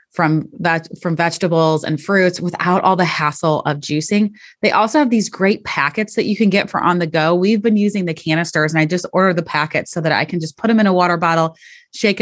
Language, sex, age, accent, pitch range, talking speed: English, female, 20-39, American, 165-210 Hz, 245 wpm